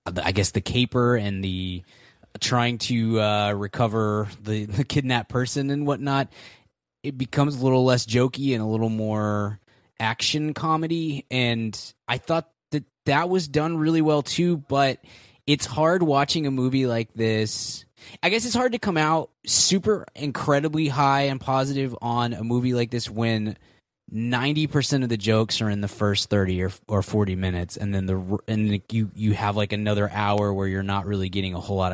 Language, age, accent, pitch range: English, 20-39, American, 105-135 Hz